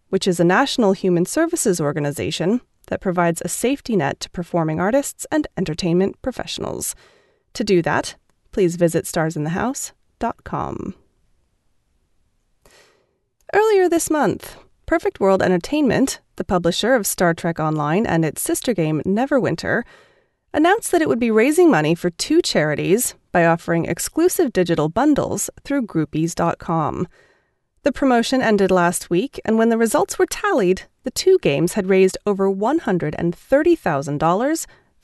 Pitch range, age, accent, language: 170-285 Hz, 30-49, American, English